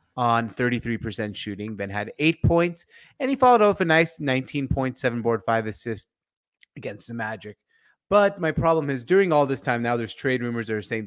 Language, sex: English, male